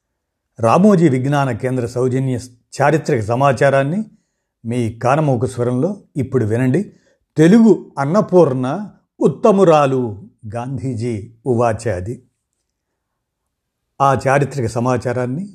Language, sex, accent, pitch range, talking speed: Telugu, male, native, 120-155 Hz, 75 wpm